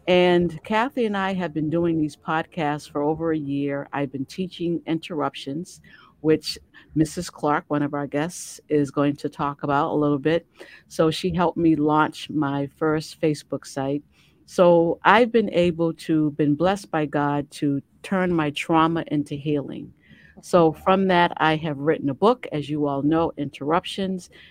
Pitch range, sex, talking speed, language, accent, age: 150-175 Hz, female, 170 wpm, English, American, 50-69